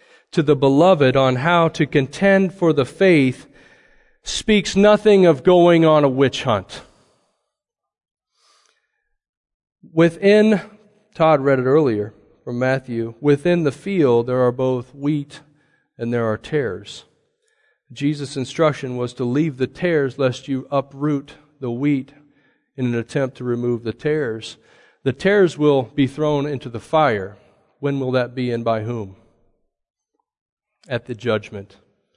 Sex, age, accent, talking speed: male, 40-59, American, 135 wpm